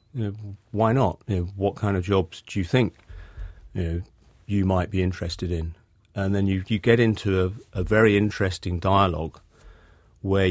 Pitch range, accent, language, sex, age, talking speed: 90-100 Hz, British, English, male, 40-59, 185 wpm